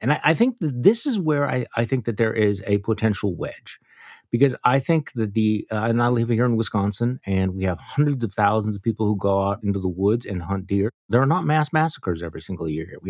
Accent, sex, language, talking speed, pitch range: American, male, English, 255 wpm, 100-125 Hz